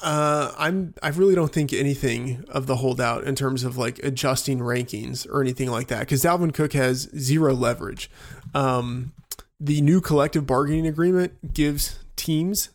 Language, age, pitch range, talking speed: English, 20-39, 130-155 Hz, 160 wpm